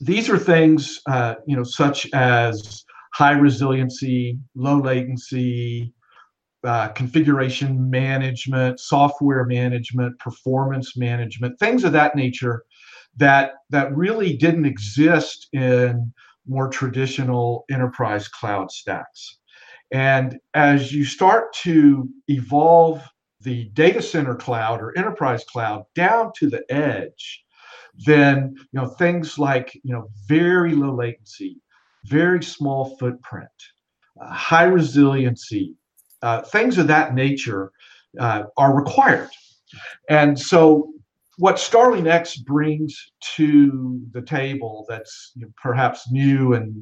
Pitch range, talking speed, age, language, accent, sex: 125-150 Hz, 110 wpm, 50-69, English, American, male